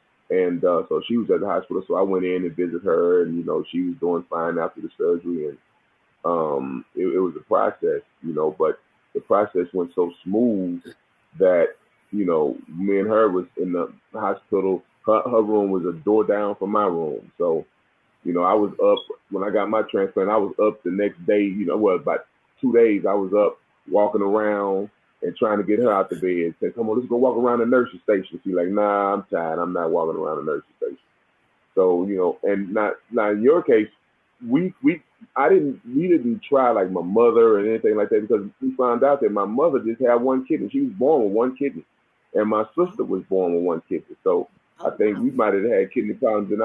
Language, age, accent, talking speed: English, 30-49, American, 230 wpm